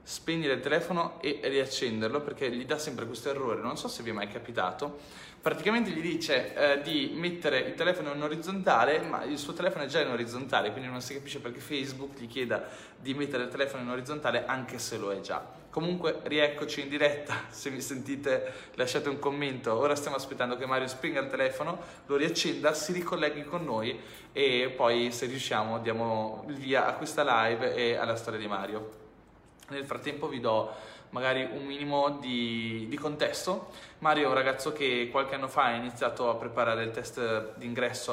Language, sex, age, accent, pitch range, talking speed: Italian, male, 20-39, native, 120-150 Hz, 185 wpm